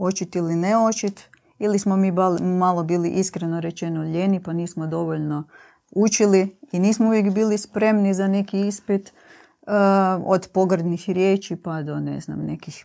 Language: Croatian